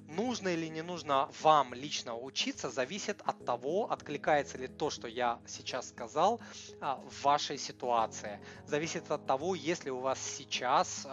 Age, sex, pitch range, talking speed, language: 20-39, male, 125-145 Hz, 150 wpm, Russian